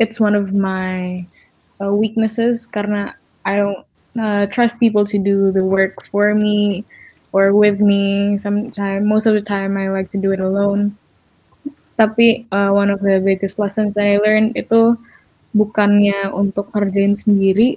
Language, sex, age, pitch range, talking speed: Indonesian, female, 10-29, 195-215 Hz, 155 wpm